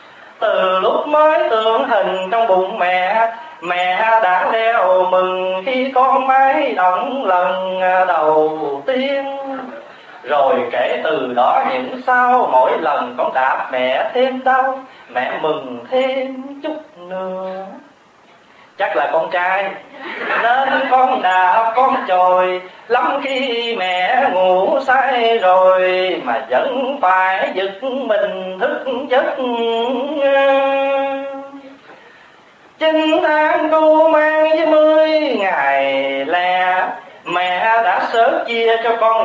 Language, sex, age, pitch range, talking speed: Vietnamese, male, 30-49, 185-270 Hz, 110 wpm